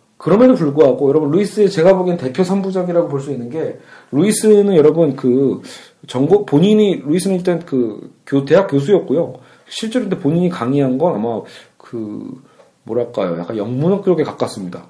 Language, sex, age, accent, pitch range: Korean, male, 40-59, native, 130-185 Hz